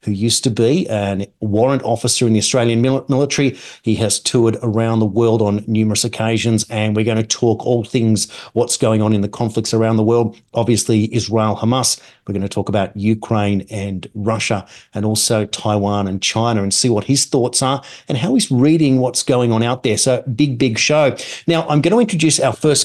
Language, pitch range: English, 110-135 Hz